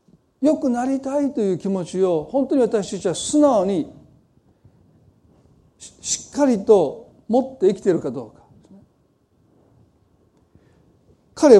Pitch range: 205-270 Hz